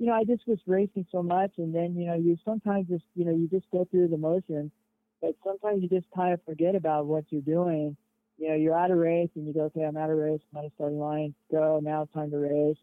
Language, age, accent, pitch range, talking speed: English, 50-69, American, 150-175 Hz, 270 wpm